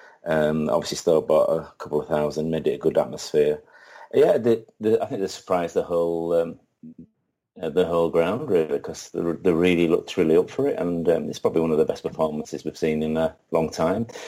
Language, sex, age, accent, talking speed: English, male, 30-49, British, 210 wpm